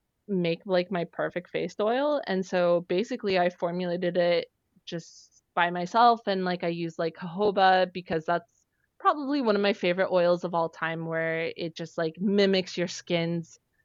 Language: English